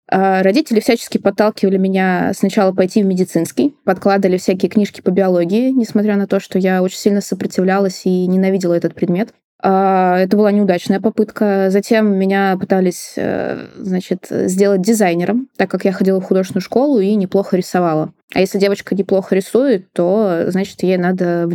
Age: 20-39